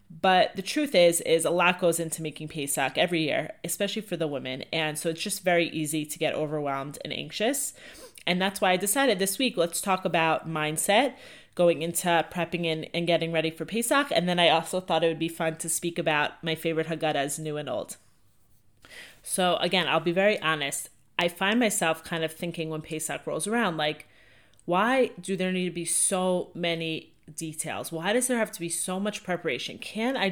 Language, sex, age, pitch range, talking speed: English, female, 30-49, 165-200 Hz, 205 wpm